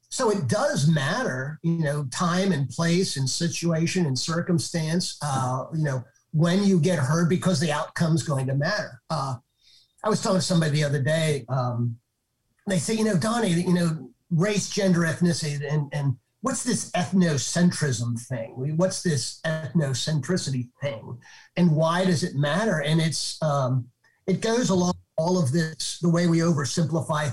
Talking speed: 160 wpm